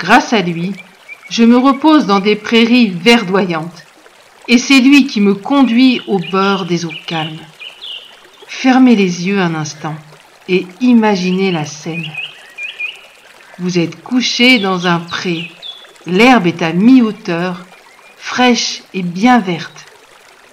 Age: 50-69